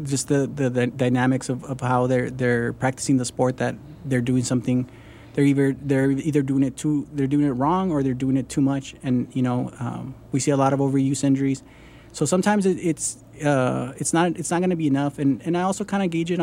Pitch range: 130-150 Hz